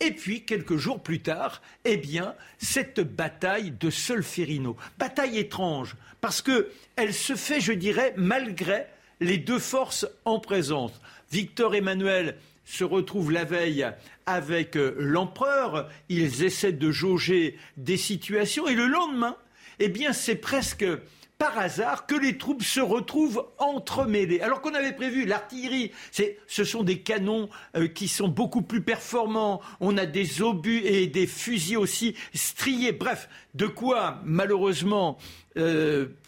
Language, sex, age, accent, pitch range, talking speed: French, male, 60-79, French, 175-255 Hz, 135 wpm